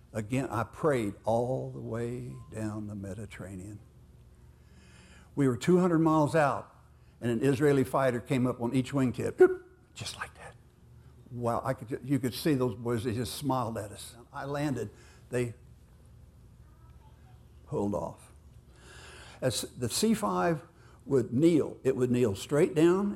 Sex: male